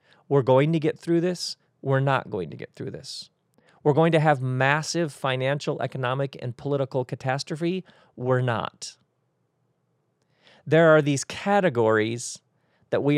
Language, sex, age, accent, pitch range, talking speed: English, male, 40-59, American, 130-165 Hz, 140 wpm